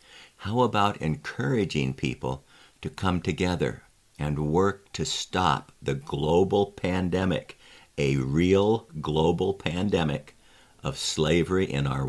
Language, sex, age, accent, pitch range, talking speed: English, male, 60-79, American, 80-105 Hz, 110 wpm